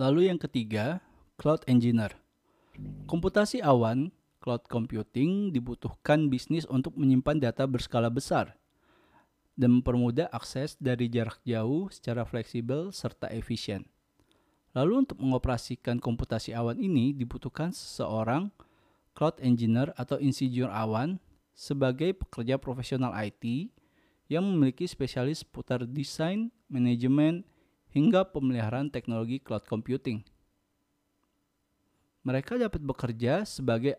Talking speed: 100 wpm